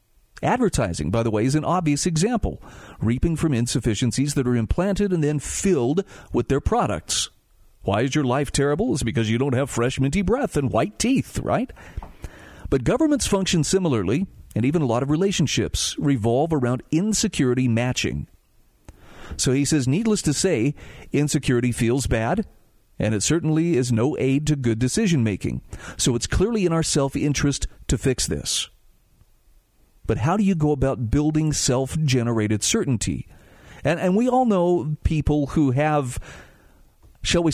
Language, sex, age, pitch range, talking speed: English, male, 40-59, 115-155 Hz, 160 wpm